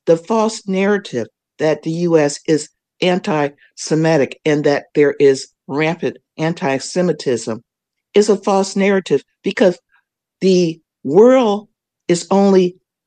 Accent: American